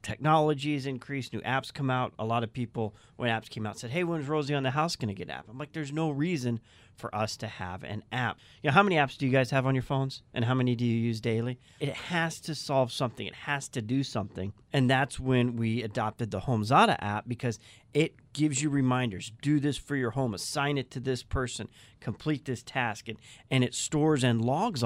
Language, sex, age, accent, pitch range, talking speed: English, male, 40-59, American, 115-135 Hz, 240 wpm